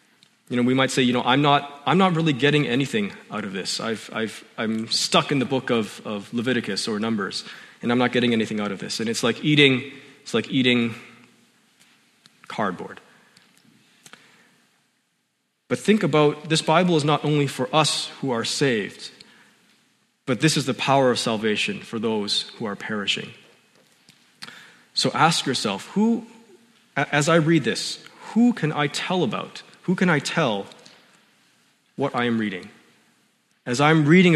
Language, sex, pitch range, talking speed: English, male, 120-155 Hz, 165 wpm